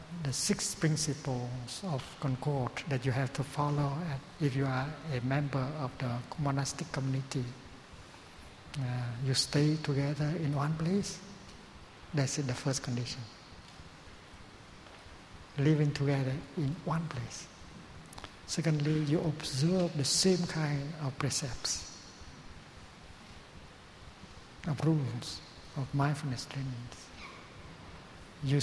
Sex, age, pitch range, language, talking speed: male, 60-79, 130-150 Hz, English, 105 wpm